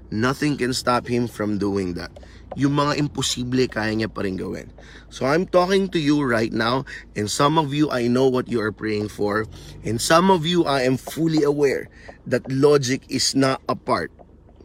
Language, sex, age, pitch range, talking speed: Filipino, male, 20-39, 100-140 Hz, 185 wpm